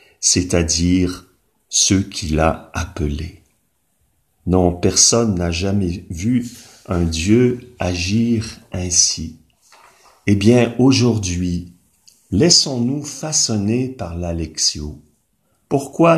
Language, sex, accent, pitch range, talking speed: French, male, French, 90-115 Hz, 80 wpm